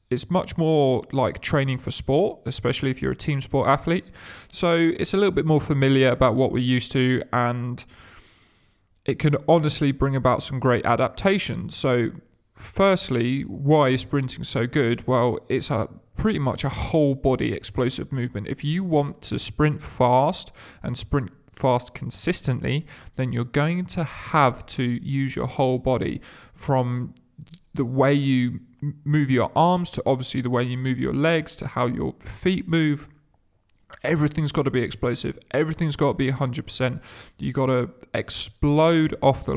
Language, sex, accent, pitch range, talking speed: English, male, British, 125-150 Hz, 165 wpm